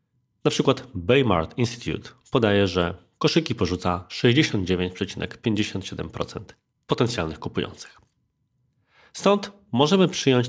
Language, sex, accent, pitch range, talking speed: Polish, male, native, 95-125 Hz, 80 wpm